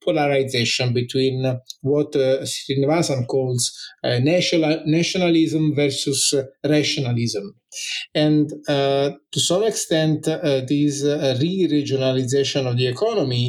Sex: male